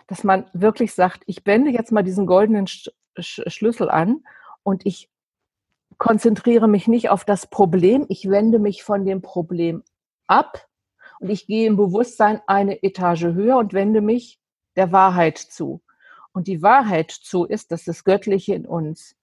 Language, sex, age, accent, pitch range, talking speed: German, female, 50-69, German, 180-220 Hz, 160 wpm